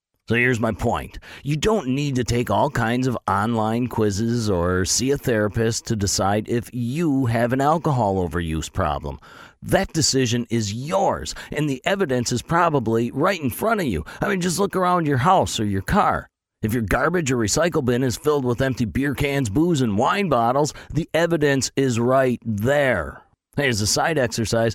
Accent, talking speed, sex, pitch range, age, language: American, 185 wpm, male, 105-140 Hz, 40-59, English